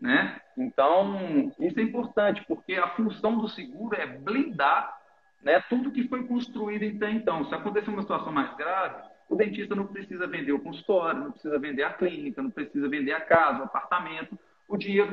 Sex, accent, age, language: male, Brazilian, 40-59, Portuguese